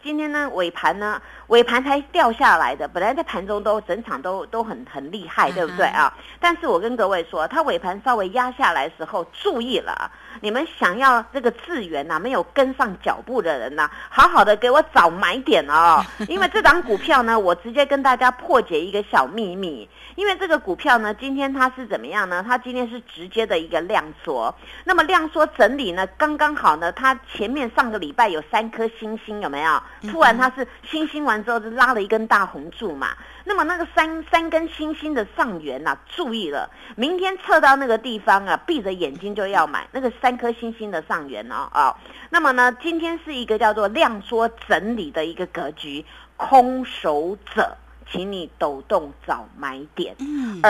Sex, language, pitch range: female, Chinese, 215-295 Hz